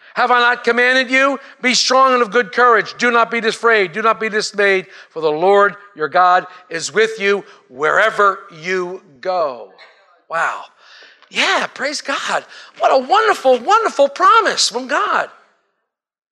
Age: 50-69